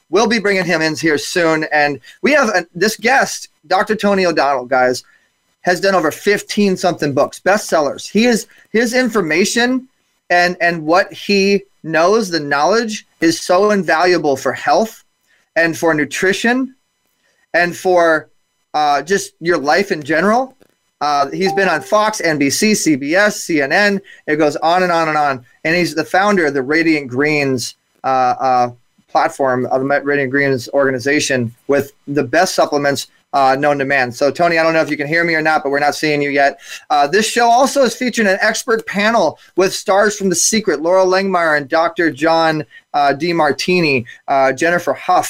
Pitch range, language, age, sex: 145-195 Hz, English, 30-49, male